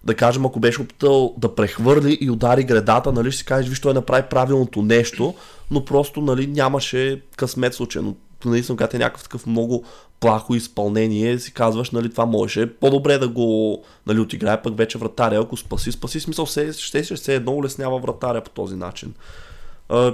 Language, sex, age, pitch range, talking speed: Bulgarian, male, 20-39, 110-130 Hz, 180 wpm